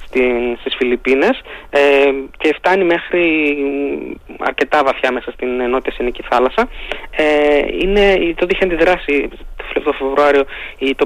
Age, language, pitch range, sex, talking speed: 20-39, Greek, 140-190 Hz, male, 115 wpm